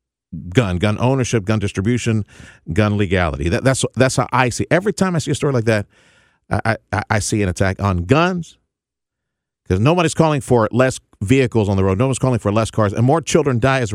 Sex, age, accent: male, 50-69, American